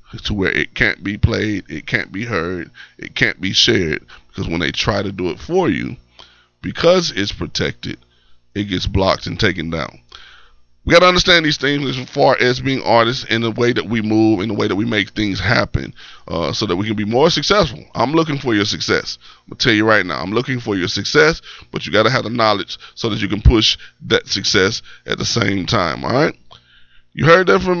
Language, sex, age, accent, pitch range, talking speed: English, male, 20-39, American, 95-130 Hz, 230 wpm